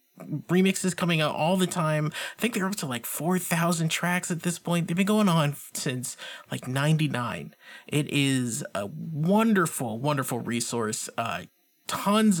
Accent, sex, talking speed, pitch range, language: American, male, 160 wpm, 145-190 Hz, English